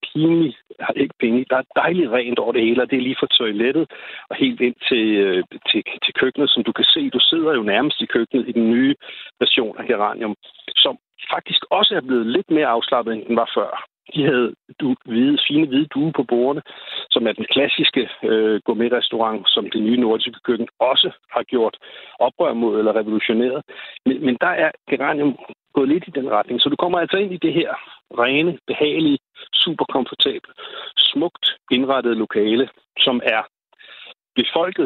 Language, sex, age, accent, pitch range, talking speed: Danish, male, 60-79, native, 115-170 Hz, 185 wpm